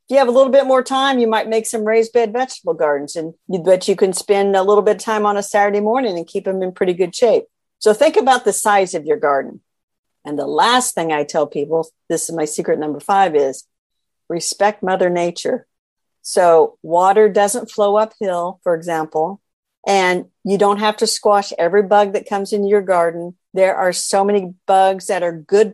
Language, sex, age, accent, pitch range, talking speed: English, female, 50-69, American, 180-225 Hz, 210 wpm